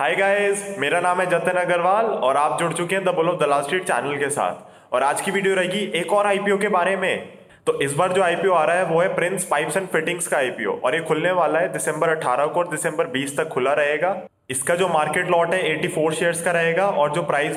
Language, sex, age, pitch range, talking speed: Hindi, male, 20-39, 150-180 Hz, 240 wpm